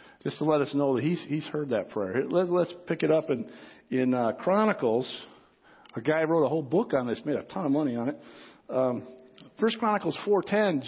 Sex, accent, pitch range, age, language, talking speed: male, American, 140-225 Hz, 50-69, English, 215 wpm